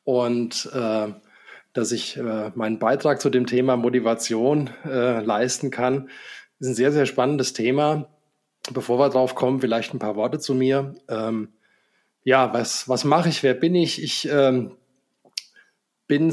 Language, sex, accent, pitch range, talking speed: German, male, German, 120-140 Hz, 155 wpm